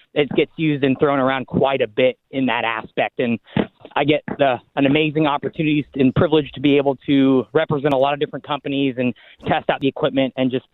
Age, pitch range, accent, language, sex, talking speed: 20-39, 135-160 Hz, American, English, male, 205 wpm